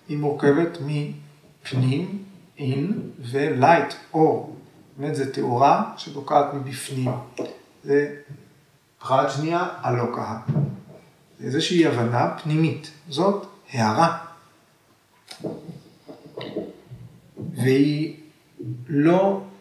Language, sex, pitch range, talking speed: Hebrew, male, 135-175 Hz, 70 wpm